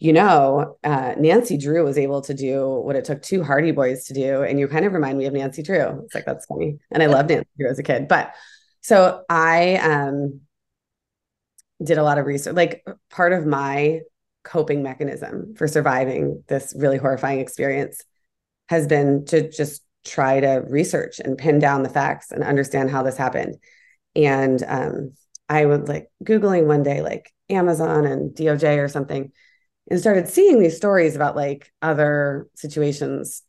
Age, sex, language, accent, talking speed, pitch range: 30-49, female, English, American, 175 wpm, 135-160 Hz